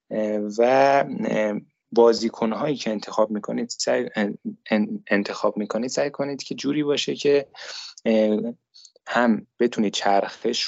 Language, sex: Persian, male